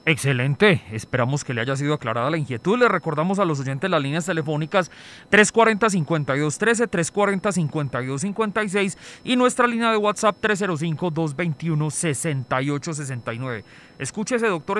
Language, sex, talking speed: Spanish, male, 110 wpm